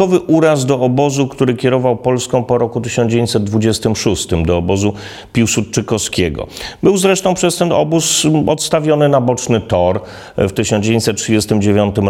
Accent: native